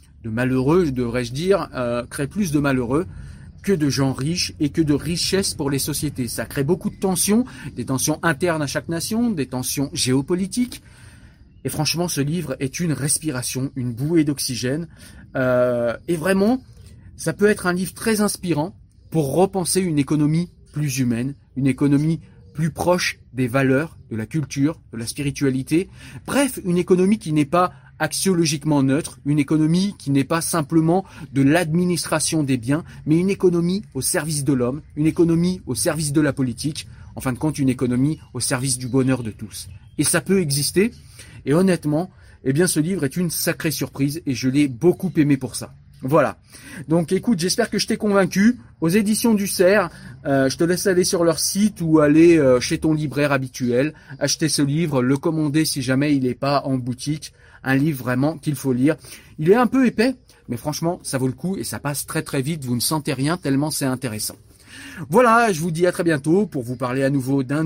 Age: 30-49